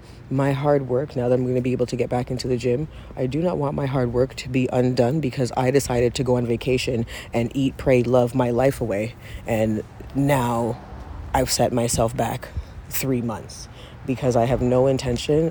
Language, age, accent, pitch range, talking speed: English, 30-49, American, 115-130 Hz, 205 wpm